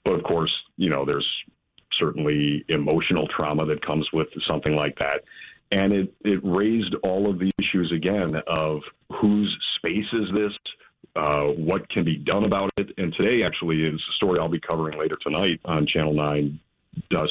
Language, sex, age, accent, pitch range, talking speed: English, male, 40-59, American, 75-85 Hz, 175 wpm